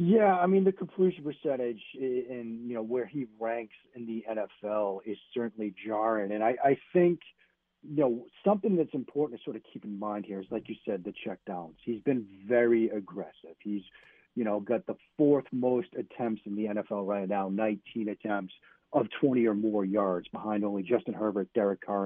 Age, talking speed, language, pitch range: 40-59, 190 wpm, English, 105-130 Hz